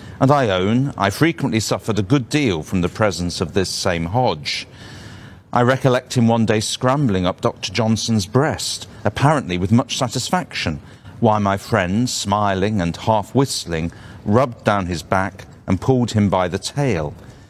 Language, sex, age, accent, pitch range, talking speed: Spanish, male, 50-69, British, 100-120 Hz, 160 wpm